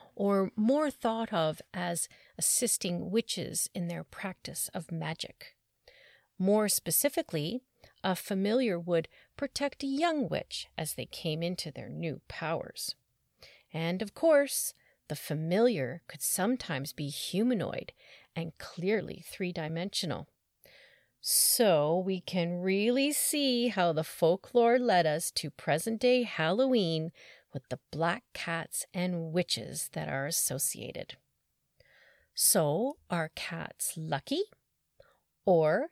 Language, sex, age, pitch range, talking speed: English, female, 40-59, 165-255 Hz, 115 wpm